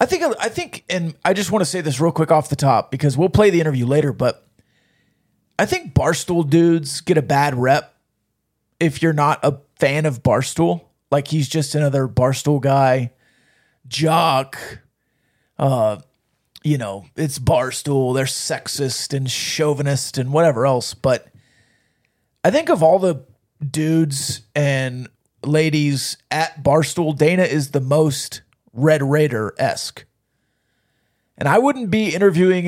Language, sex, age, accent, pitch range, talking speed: English, male, 30-49, American, 130-165 Hz, 145 wpm